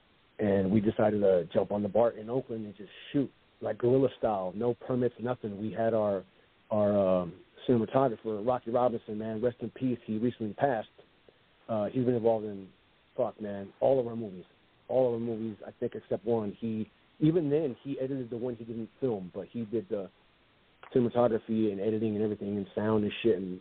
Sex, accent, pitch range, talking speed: male, American, 105-120 Hz, 195 wpm